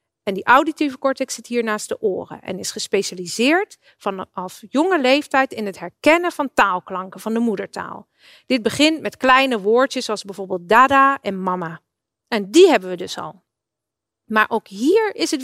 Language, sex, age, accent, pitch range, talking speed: Dutch, female, 40-59, Dutch, 200-290 Hz, 170 wpm